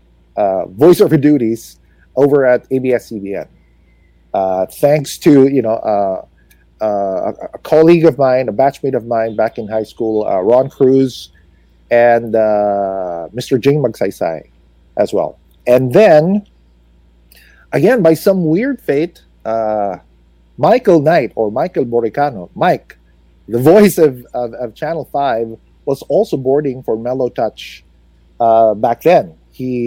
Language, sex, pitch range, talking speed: English, male, 85-140 Hz, 135 wpm